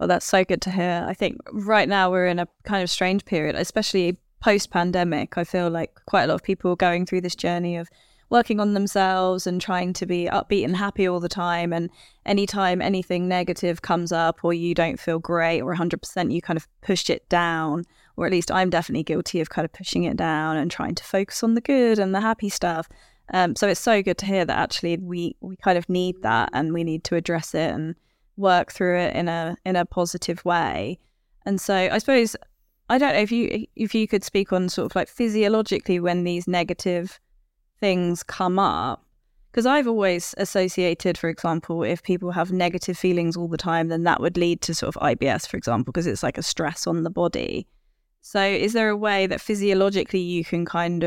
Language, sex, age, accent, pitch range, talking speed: English, female, 20-39, British, 170-195 Hz, 215 wpm